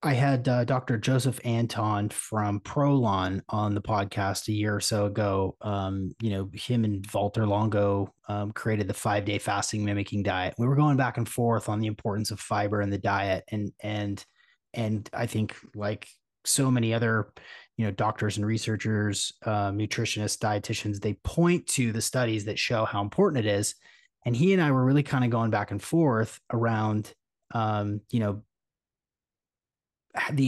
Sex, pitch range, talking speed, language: male, 105-130 Hz, 175 wpm, English